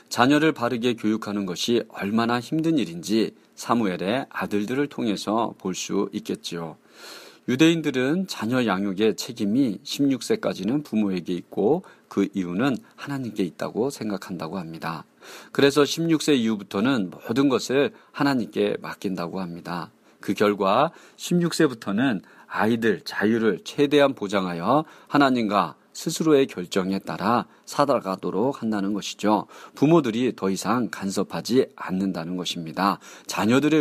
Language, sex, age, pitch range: Korean, male, 40-59, 95-140 Hz